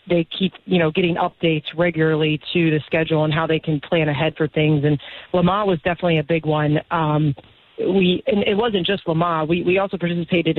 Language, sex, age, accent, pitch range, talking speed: English, female, 40-59, American, 160-180 Hz, 205 wpm